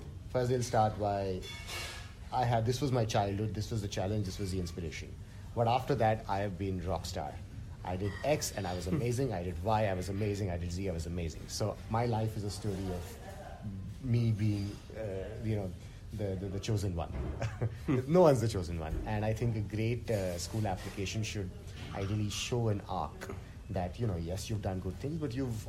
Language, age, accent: English, 30-49, Indian